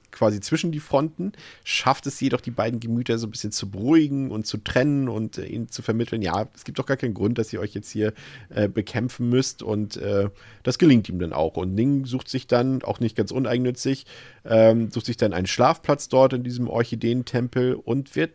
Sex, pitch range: male, 110-130 Hz